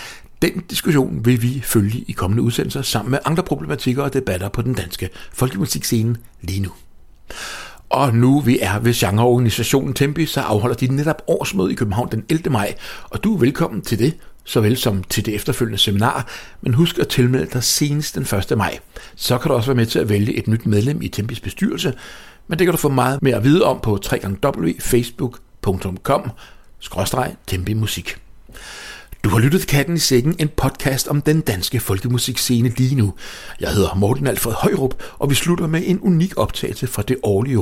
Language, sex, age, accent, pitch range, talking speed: English, male, 60-79, Danish, 110-140 Hz, 180 wpm